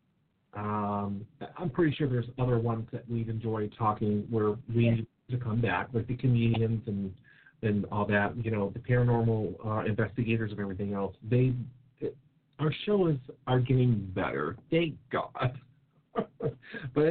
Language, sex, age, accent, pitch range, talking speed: English, male, 40-59, American, 110-135 Hz, 150 wpm